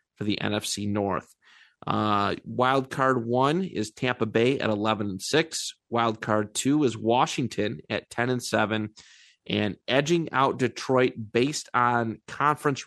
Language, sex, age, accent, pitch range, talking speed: English, male, 30-49, American, 110-130 Hz, 140 wpm